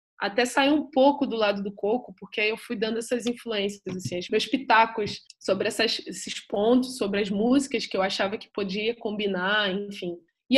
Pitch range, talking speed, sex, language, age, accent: 200-255 Hz, 195 wpm, female, Portuguese, 20-39, Brazilian